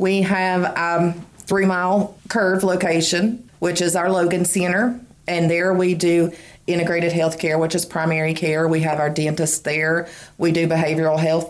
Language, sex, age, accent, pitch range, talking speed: English, female, 30-49, American, 160-190 Hz, 165 wpm